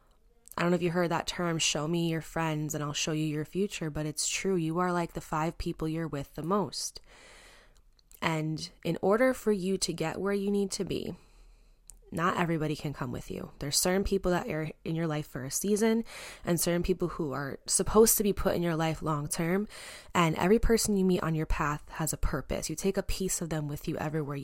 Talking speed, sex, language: 230 wpm, female, English